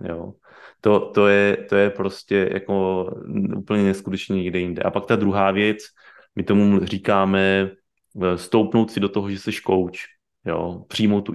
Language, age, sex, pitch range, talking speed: Czech, 30-49, male, 95-110 Hz, 160 wpm